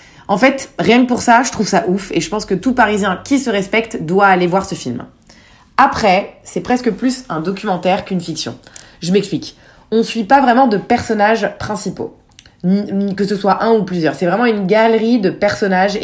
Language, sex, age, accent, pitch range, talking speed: French, female, 20-39, French, 180-230 Hz, 205 wpm